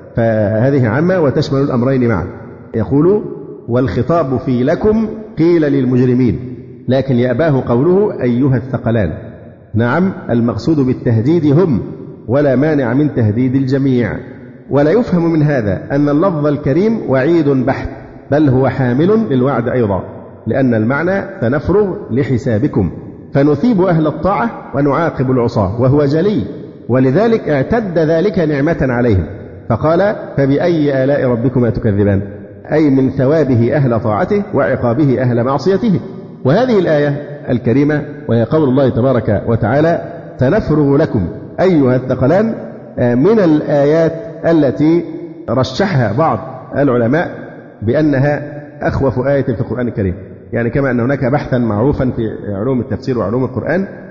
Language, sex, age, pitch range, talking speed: Arabic, male, 50-69, 120-155 Hz, 115 wpm